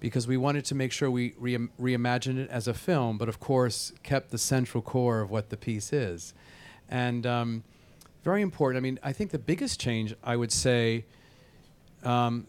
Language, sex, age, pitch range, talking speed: English, male, 40-59, 110-125 Hz, 185 wpm